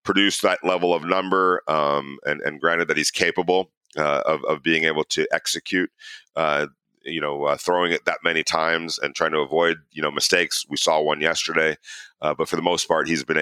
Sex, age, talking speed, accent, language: male, 40-59, 210 wpm, American, English